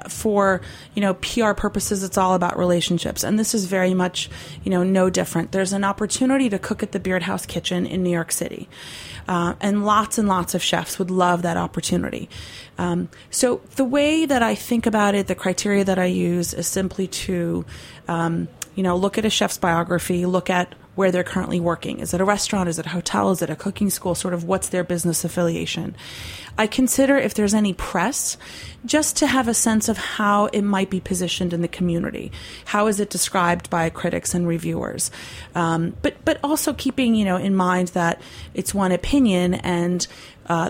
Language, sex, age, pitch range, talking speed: English, female, 30-49, 175-205 Hz, 200 wpm